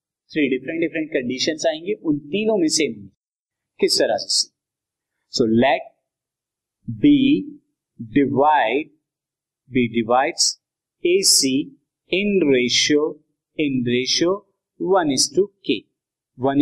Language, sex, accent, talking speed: Hindi, male, native, 85 wpm